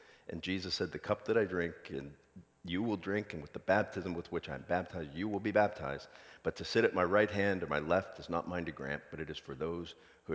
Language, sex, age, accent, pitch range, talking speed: English, male, 40-59, American, 75-105 Hz, 265 wpm